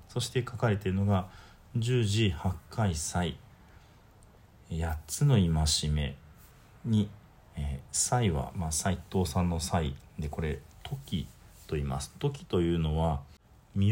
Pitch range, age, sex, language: 75-115 Hz, 40-59, male, Japanese